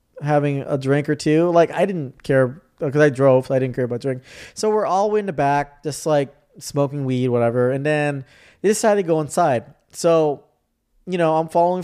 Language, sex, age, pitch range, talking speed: English, male, 20-39, 130-165 Hz, 210 wpm